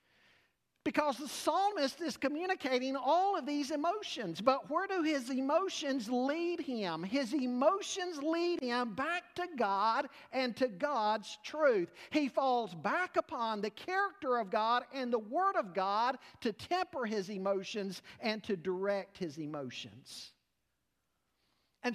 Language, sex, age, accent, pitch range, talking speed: English, male, 50-69, American, 230-315 Hz, 135 wpm